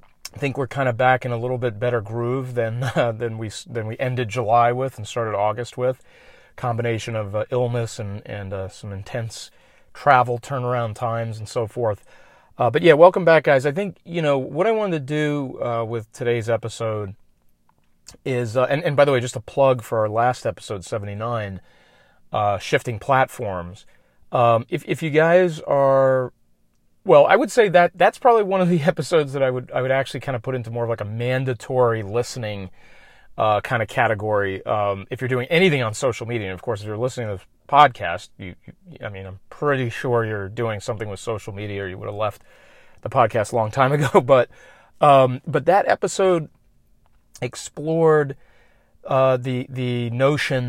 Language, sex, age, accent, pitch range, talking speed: English, male, 40-59, American, 110-135 Hz, 195 wpm